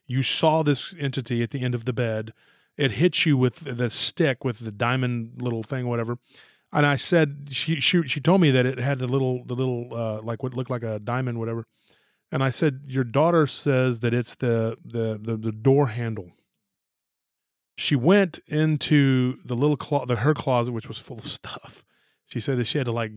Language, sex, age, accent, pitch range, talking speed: English, male, 30-49, American, 120-145 Hz, 205 wpm